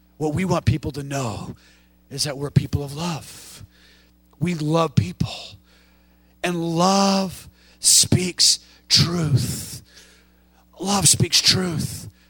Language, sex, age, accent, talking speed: English, male, 40-59, American, 105 wpm